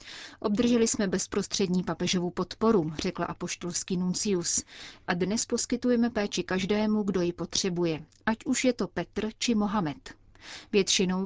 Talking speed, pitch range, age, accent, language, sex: 130 wpm, 180-210 Hz, 30-49, native, Czech, female